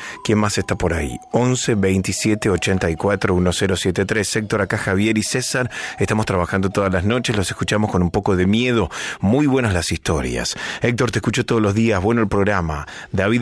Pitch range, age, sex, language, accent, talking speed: 95-120 Hz, 30-49, male, Spanish, Argentinian, 180 wpm